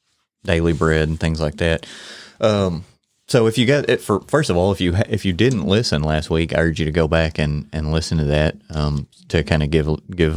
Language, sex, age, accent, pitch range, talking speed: English, male, 30-49, American, 80-90 Hz, 235 wpm